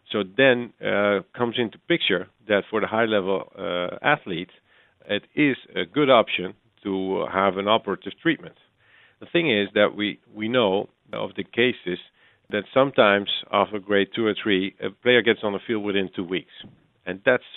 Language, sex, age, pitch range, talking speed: English, male, 50-69, 95-105 Hz, 175 wpm